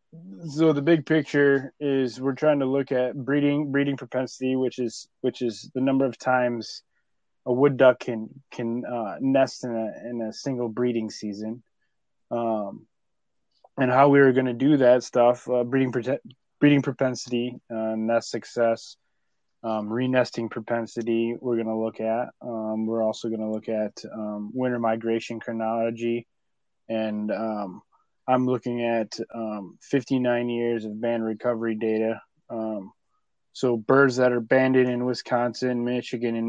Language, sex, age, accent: English, male, 20-39, American